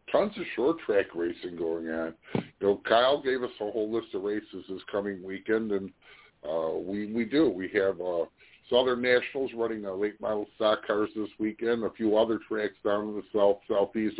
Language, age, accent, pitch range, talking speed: English, 50-69, American, 100-120 Hz, 190 wpm